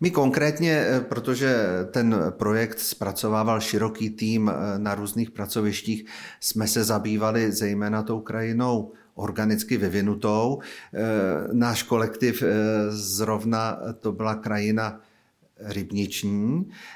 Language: Czech